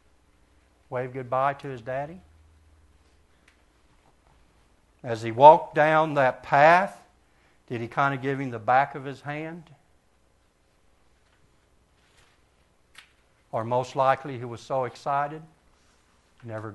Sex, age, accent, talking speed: male, 60-79, American, 110 wpm